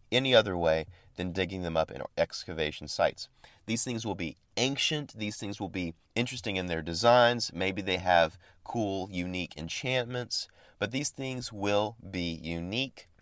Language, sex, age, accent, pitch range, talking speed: English, male, 30-49, American, 80-100 Hz, 160 wpm